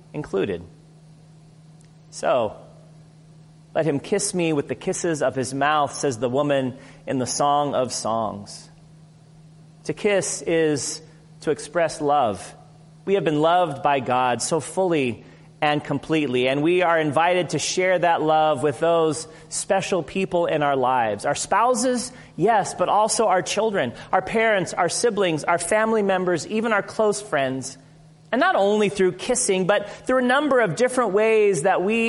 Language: English